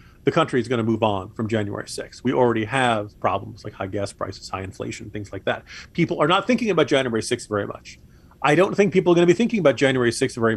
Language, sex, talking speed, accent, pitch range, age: English, male, 255 wpm, American, 105-135 Hz, 40-59